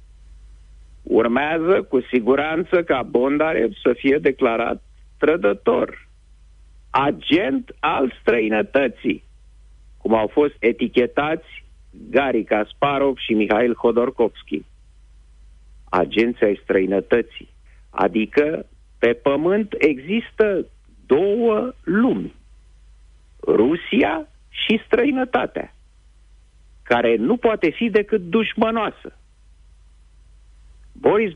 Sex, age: male, 50-69